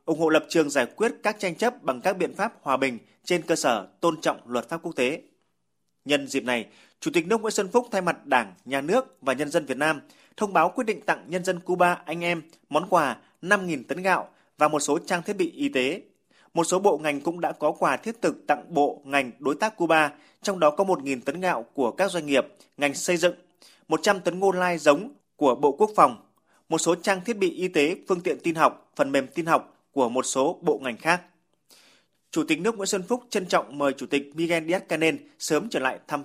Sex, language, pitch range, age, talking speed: male, Vietnamese, 150-190 Hz, 20-39, 235 wpm